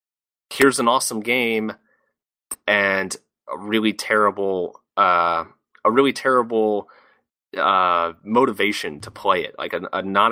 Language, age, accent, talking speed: English, 30-49, American, 120 wpm